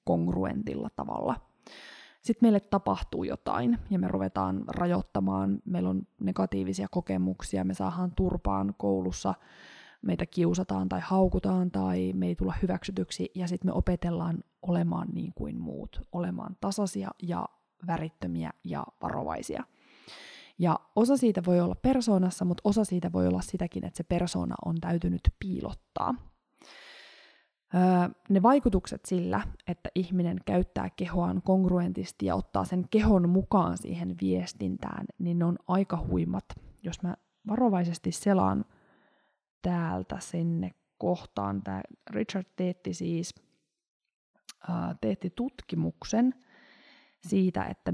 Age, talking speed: 20-39, 120 wpm